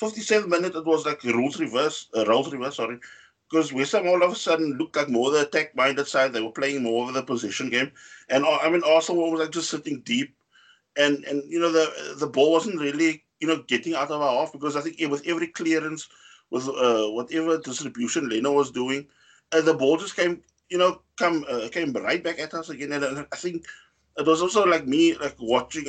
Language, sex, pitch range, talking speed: English, male, 140-175 Hz, 220 wpm